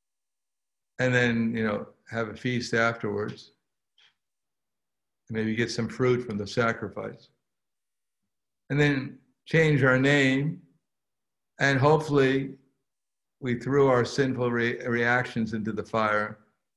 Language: English